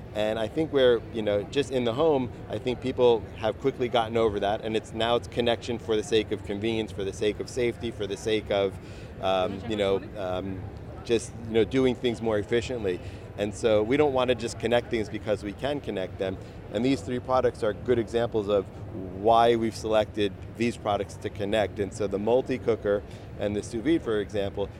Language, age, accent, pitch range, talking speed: English, 40-59, American, 100-115 Hz, 210 wpm